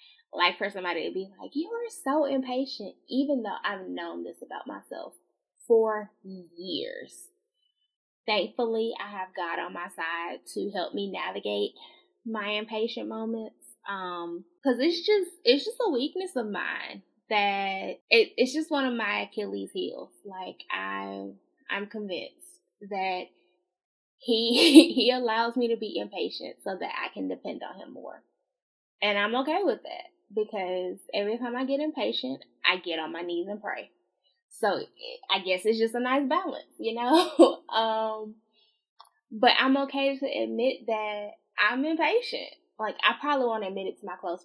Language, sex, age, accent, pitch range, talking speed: English, female, 10-29, American, 190-280 Hz, 160 wpm